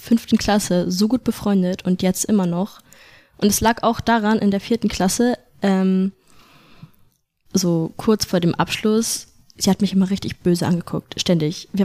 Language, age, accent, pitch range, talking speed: German, 10-29, German, 175-210 Hz, 165 wpm